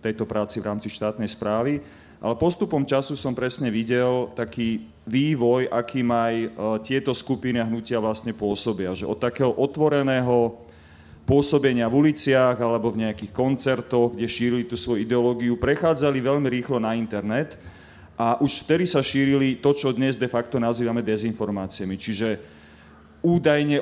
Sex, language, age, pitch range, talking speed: male, Slovak, 30-49, 115-130 Hz, 145 wpm